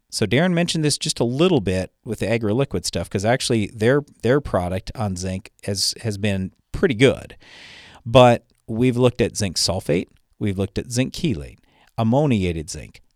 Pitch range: 100-140 Hz